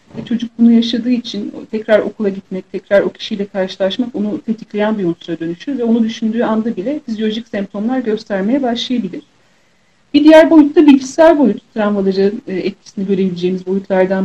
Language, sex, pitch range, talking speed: Turkish, female, 205-255 Hz, 145 wpm